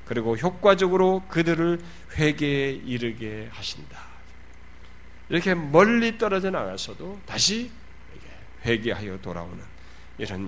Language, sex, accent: Korean, male, native